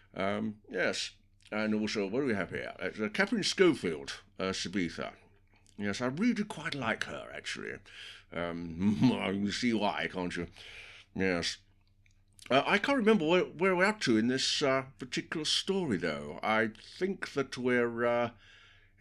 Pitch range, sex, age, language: 95-120 Hz, male, 60-79, English